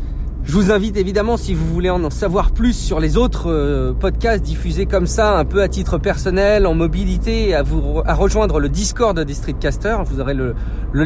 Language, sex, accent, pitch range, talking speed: French, male, French, 155-235 Hz, 200 wpm